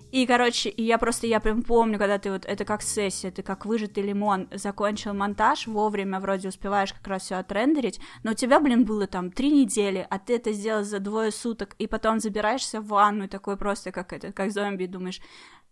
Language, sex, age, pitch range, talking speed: Russian, female, 20-39, 195-230 Hz, 215 wpm